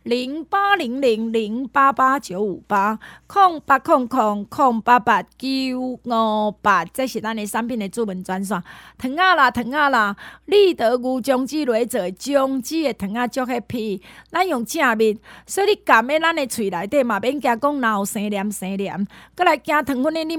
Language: Chinese